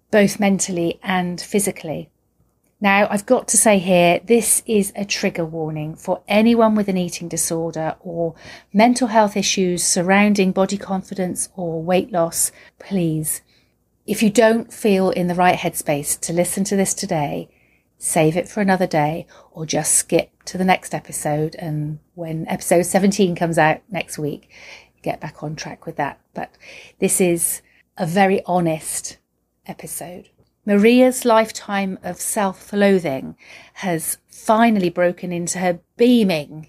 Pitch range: 165-205 Hz